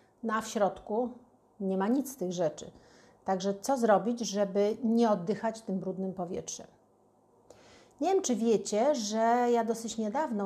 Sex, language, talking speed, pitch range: female, Polish, 150 wpm, 190-235 Hz